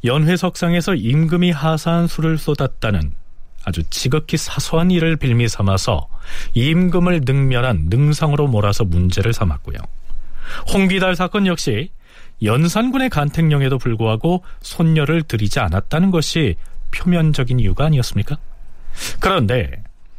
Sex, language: male, Korean